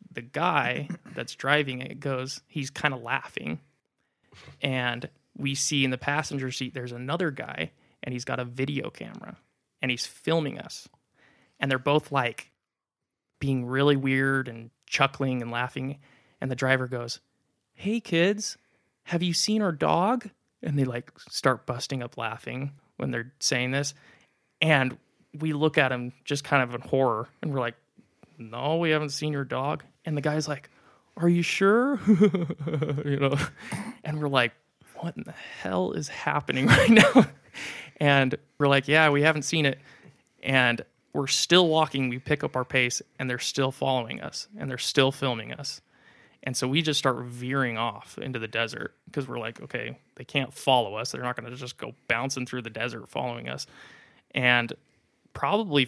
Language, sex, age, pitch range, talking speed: English, male, 20-39, 125-150 Hz, 175 wpm